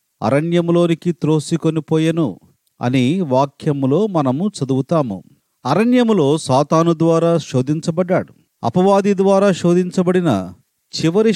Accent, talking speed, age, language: native, 75 wpm, 40-59, Telugu